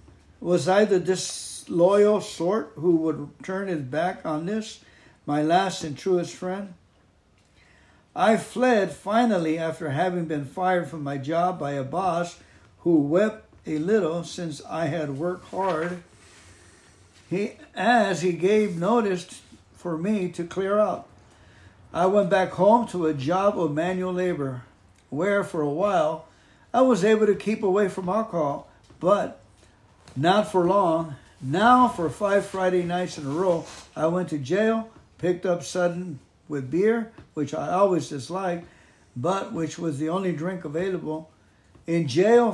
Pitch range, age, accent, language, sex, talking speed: 155-195 Hz, 60-79, American, English, male, 150 wpm